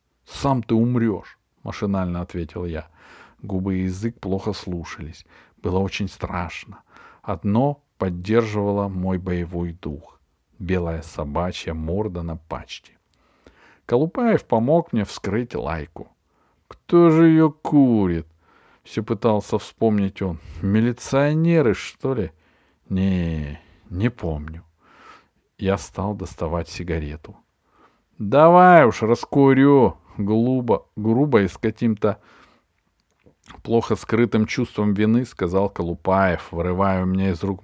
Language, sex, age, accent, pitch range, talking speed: Russian, male, 50-69, native, 90-120 Hz, 105 wpm